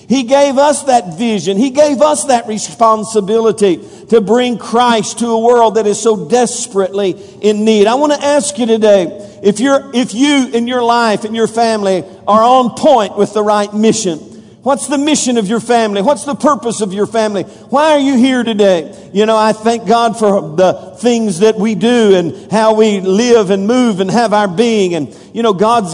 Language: English